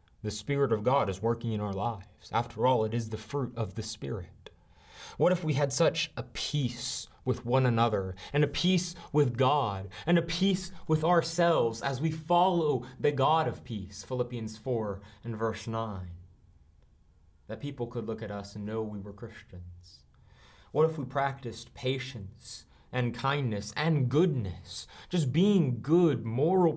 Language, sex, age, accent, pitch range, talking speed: English, male, 30-49, American, 100-140 Hz, 165 wpm